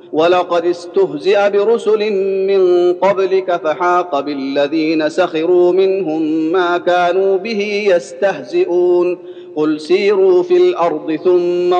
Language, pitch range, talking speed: Arabic, 175-210 Hz, 90 wpm